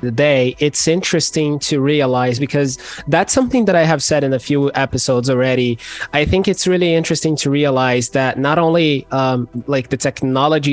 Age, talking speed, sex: 20-39, 180 wpm, male